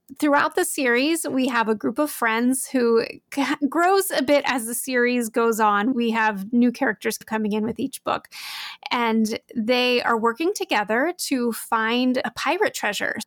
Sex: female